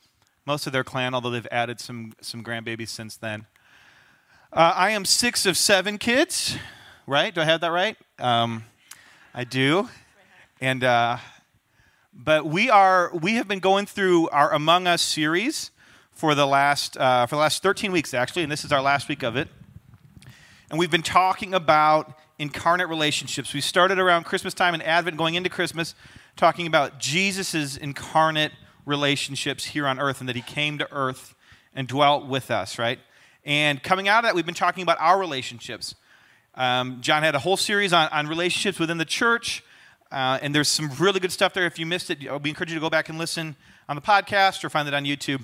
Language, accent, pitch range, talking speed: English, American, 140-180 Hz, 195 wpm